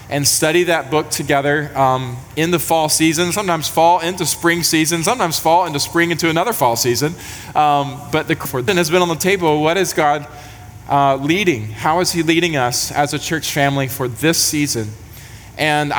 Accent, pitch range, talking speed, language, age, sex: American, 130-165 Hz, 190 wpm, English, 20-39, male